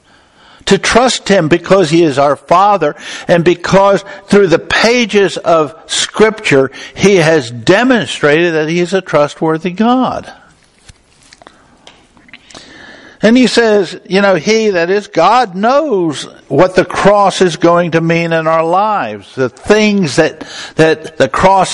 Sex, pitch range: male, 150-195 Hz